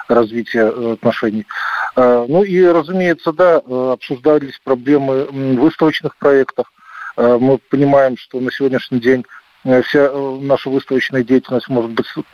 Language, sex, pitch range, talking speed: Russian, male, 125-145 Hz, 105 wpm